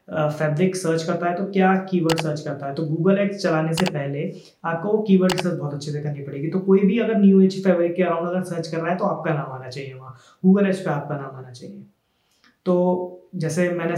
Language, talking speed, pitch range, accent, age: Hindi, 235 wpm, 150-185 Hz, native, 20-39